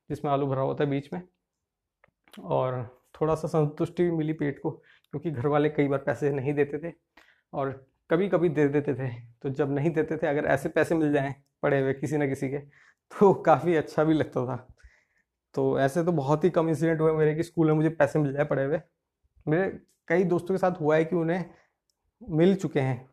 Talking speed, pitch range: 210 wpm, 140-160 Hz